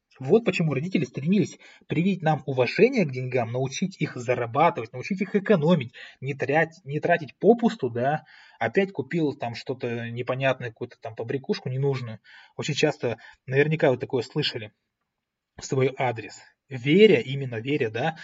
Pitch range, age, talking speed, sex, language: 130-170 Hz, 20-39, 140 wpm, male, Russian